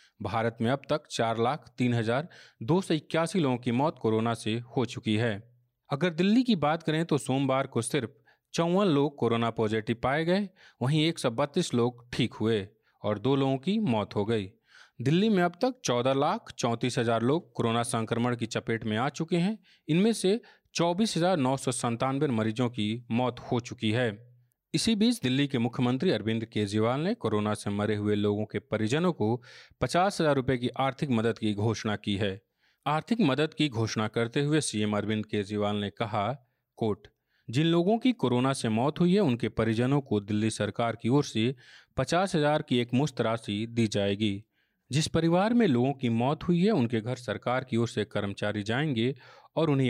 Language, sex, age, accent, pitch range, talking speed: Hindi, male, 40-59, native, 110-150 Hz, 185 wpm